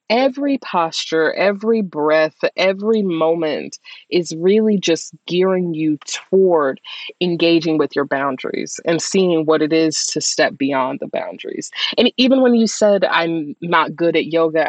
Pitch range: 155-210 Hz